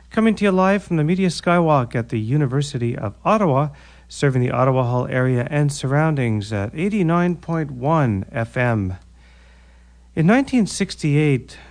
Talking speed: 130 wpm